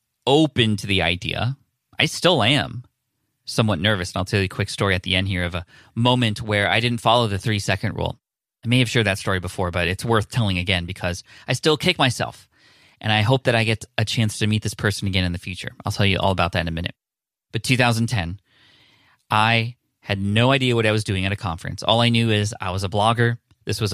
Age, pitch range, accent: 20-39, 100-120 Hz, American